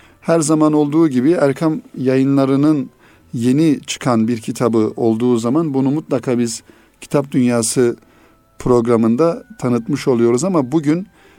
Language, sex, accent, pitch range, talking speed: Turkish, male, native, 115-145 Hz, 115 wpm